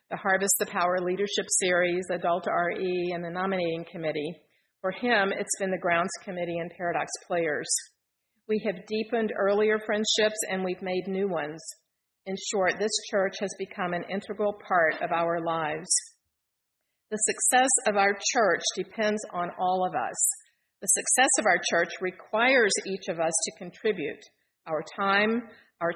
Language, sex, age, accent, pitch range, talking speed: English, female, 50-69, American, 180-215 Hz, 155 wpm